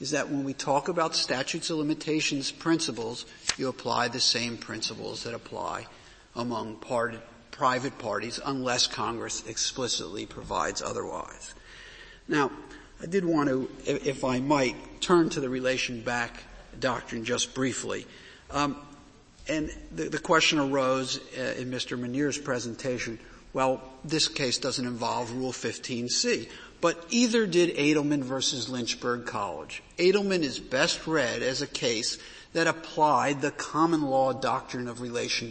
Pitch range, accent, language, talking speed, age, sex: 120-155 Hz, American, English, 135 wpm, 50-69, male